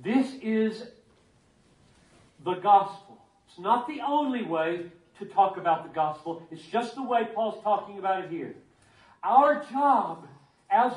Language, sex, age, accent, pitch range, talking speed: English, male, 40-59, American, 185-260 Hz, 140 wpm